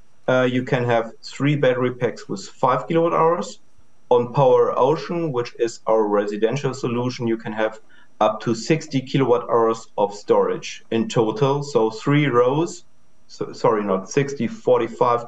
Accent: German